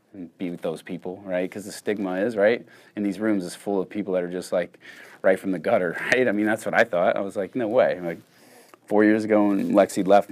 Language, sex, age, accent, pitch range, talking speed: English, male, 30-49, American, 85-100 Hz, 260 wpm